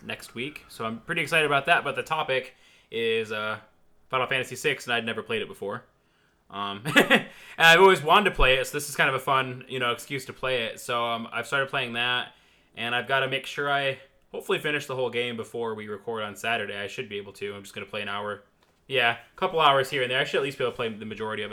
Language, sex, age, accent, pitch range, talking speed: English, male, 20-39, American, 115-150 Hz, 270 wpm